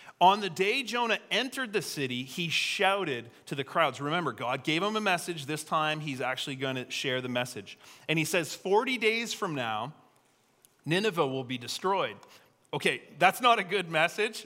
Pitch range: 140-180 Hz